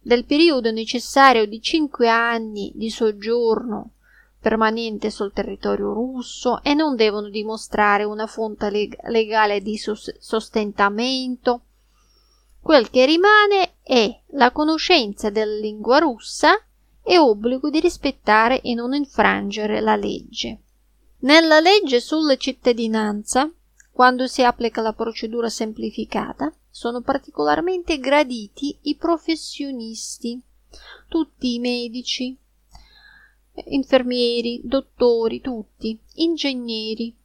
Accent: native